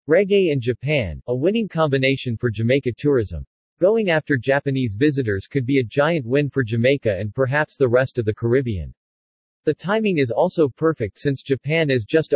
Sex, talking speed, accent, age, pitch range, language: male, 175 wpm, American, 40-59, 120-150 Hz, English